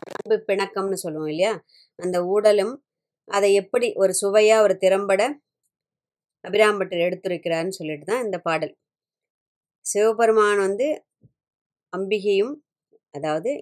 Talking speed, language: 95 wpm, Tamil